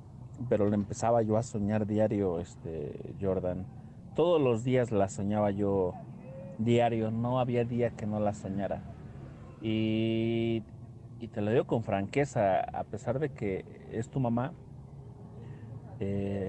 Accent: Mexican